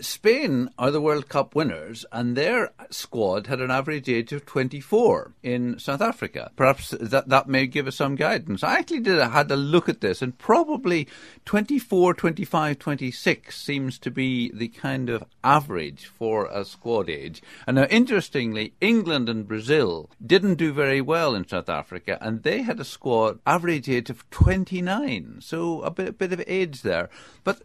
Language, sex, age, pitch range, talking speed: English, male, 50-69, 120-170 Hz, 170 wpm